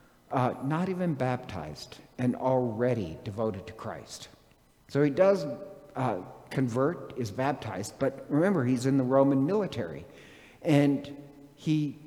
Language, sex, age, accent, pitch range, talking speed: English, male, 60-79, American, 120-150 Hz, 125 wpm